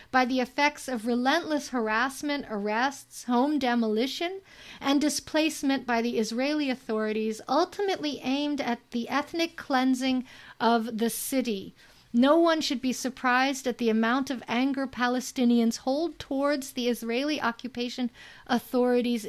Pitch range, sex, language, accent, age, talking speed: 230-285 Hz, female, English, American, 50-69, 130 wpm